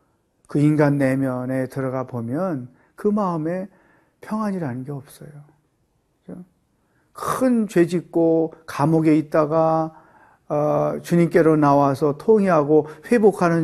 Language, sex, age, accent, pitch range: Korean, male, 40-59, native, 145-195 Hz